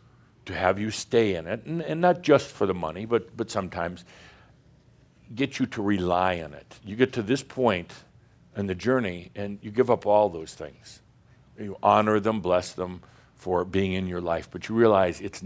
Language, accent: English, American